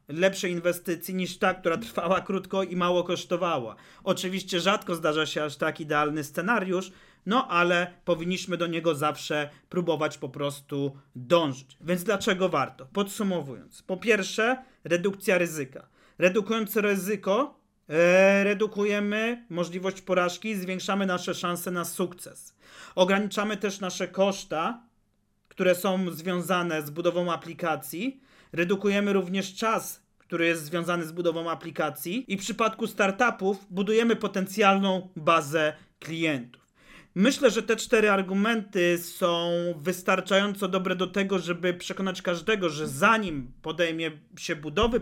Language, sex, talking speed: Polish, male, 125 wpm